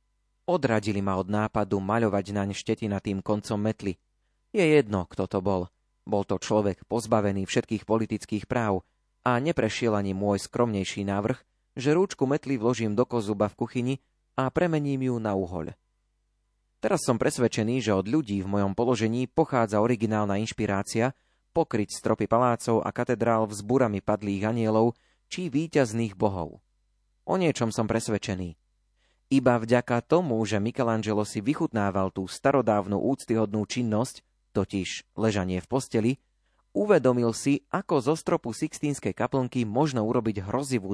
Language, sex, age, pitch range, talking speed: Slovak, male, 30-49, 100-125 Hz, 135 wpm